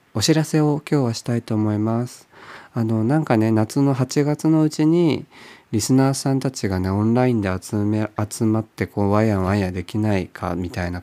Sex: male